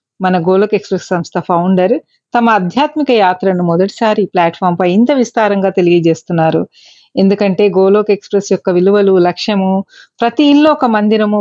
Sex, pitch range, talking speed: female, 180-230 Hz, 125 wpm